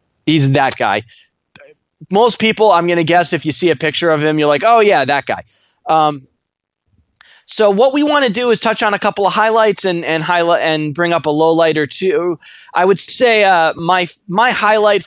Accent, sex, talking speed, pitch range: American, male, 215 wpm, 140-170 Hz